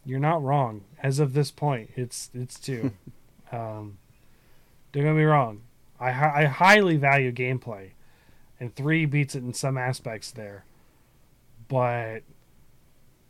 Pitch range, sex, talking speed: 125-175 Hz, male, 130 wpm